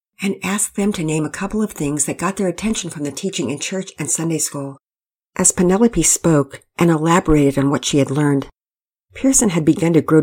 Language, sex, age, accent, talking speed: English, female, 50-69, American, 210 wpm